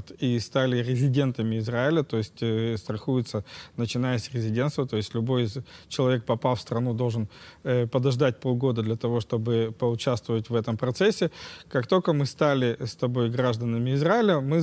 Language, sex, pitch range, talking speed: Russian, male, 120-145 Hz, 160 wpm